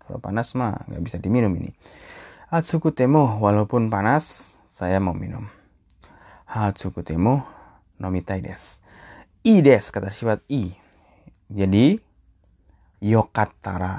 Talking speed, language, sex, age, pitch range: 110 wpm, Indonesian, male, 20-39, 95-115 Hz